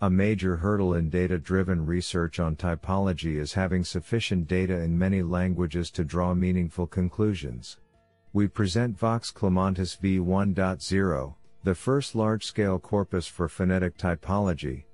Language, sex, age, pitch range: English, male, 50-69, 85-100 Hz